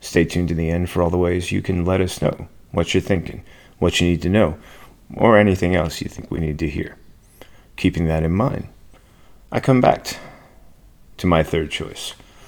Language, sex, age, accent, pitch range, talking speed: English, male, 30-49, American, 80-95 Hz, 200 wpm